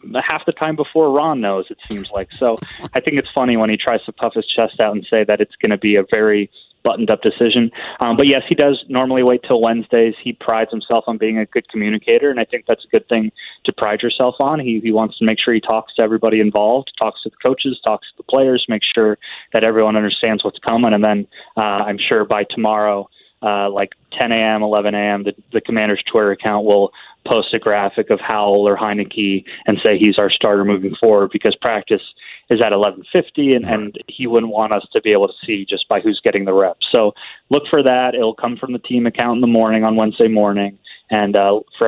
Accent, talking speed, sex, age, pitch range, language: American, 230 wpm, male, 20-39, 105-125 Hz, English